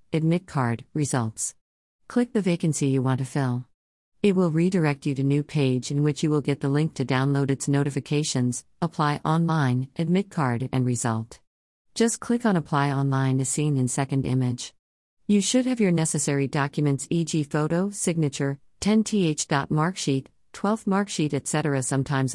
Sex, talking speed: female, 155 wpm